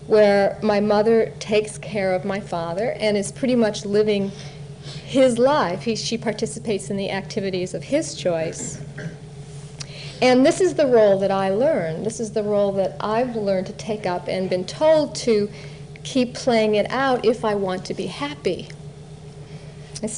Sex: female